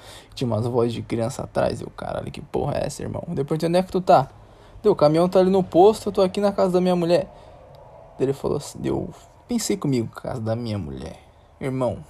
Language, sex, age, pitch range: Portuguese, male, 20-39, 110-150 Hz